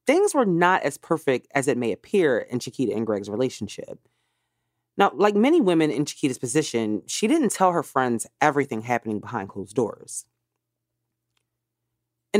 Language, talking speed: English, 155 wpm